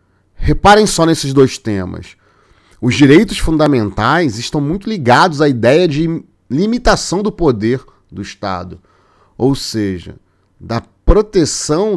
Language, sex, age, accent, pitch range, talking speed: Portuguese, male, 40-59, Brazilian, 95-155 Hz, 115 wpm